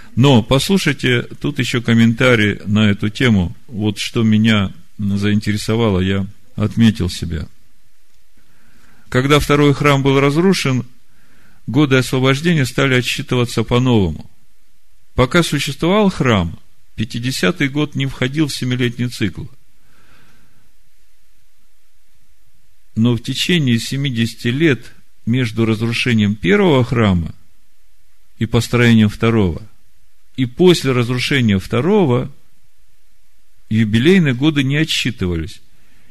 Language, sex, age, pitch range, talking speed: Russian, male, 50-69, 105-135 Hz, 90 wpm